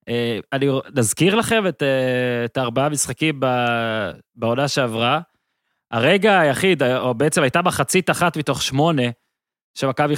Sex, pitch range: male, 130-160 Hz